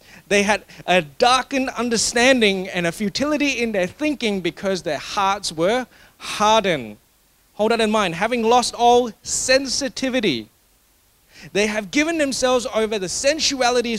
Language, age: English, 30-49